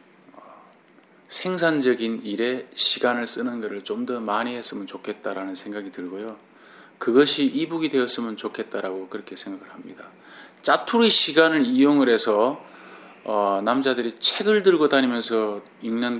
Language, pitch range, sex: Korean, 105-140 Hz, male